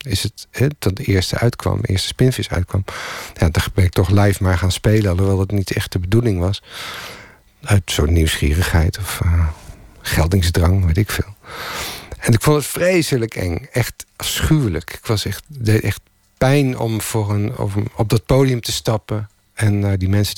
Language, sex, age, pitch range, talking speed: Dutch, male, 50-69, 95-120 Hz, 190 wpm